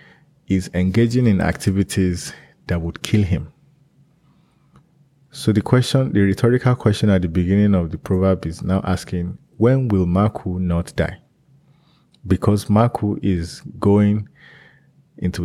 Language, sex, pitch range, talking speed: English, male, 95-140 Hz, 130 wpm